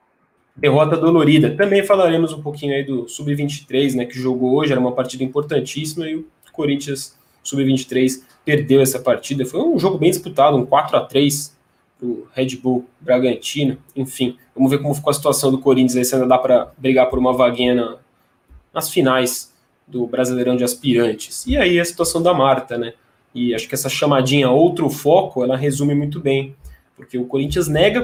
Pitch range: 125-150 Hz